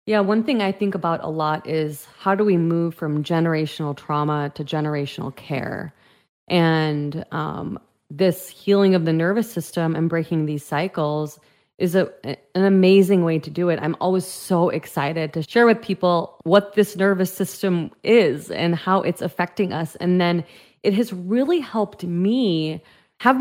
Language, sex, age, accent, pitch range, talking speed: English, female, 30-49, American, 165-200 Hz, 165 wpm